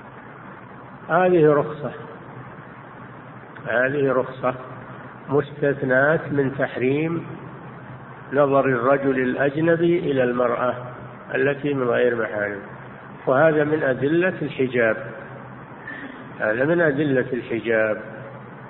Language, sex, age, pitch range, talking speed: Arabic, male, 50-69, 130-160 Hz, 80 wpm